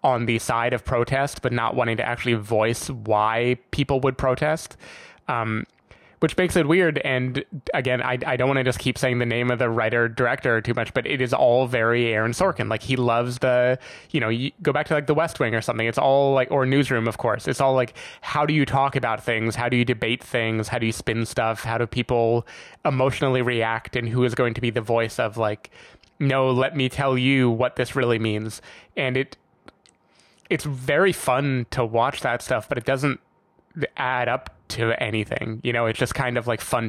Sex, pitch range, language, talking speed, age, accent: male, 115-140 Hz, English, 220 wpm, 20-39, American